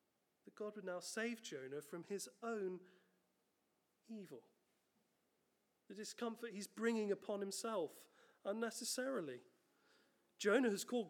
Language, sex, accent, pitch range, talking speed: English, male, British, 185-255 Hz, 110 wpm